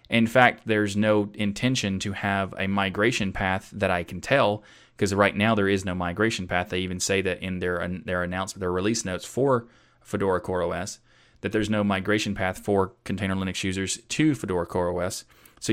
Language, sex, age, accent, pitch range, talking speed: English, male, 30-49, American, 95-115 Hz, 195 wpm